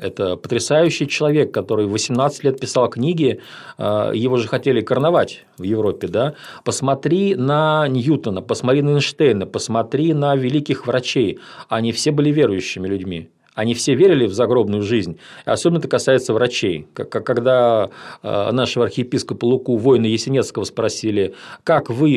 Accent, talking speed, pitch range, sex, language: native, 130 wpm, 115-150 Hz, male, Russian